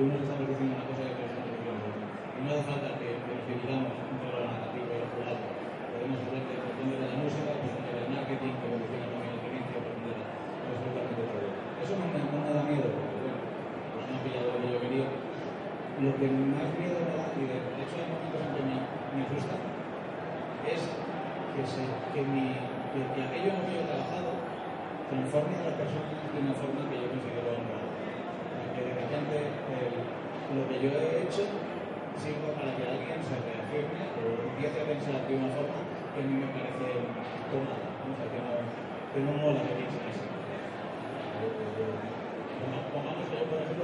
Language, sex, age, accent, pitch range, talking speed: Spanish, male, 30-49, Spanish, 125-150 Hz, 180 wpm